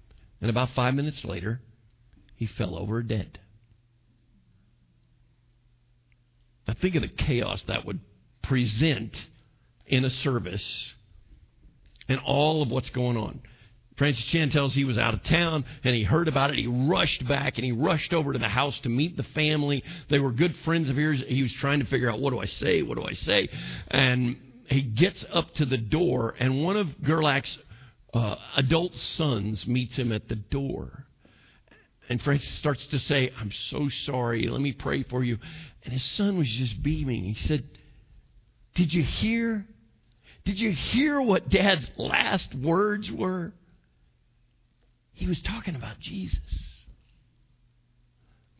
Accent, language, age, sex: American, English, 50-69, male